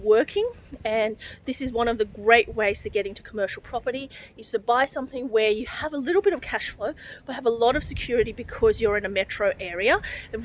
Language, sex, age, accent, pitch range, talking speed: English, female, 30-49, Australian, 225-300 Hz, 230 wpm